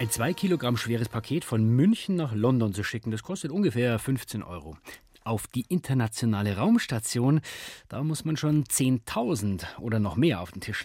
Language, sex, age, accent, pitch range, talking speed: German, male, 30-49, German, 110-155 Hz, 170 wpm